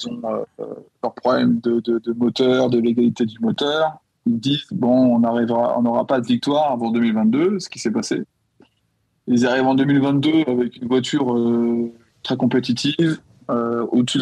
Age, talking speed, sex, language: 20-39, 170 wpm, male, French